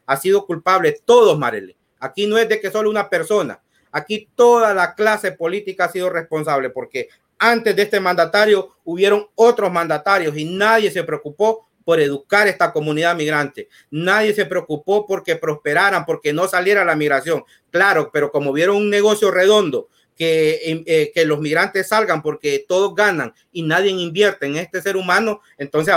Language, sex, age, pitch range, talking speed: Spanish, male, 40-59, 150-195 Hz, 170 wpm